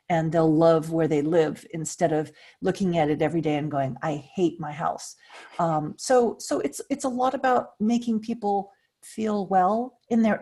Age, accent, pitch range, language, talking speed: 40-59, American, 175-225 Hz, English, 190 wpm